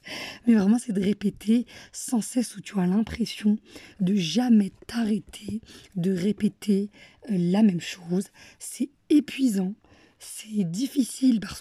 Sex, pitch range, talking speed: female, 195-240 Hz, 125 wpm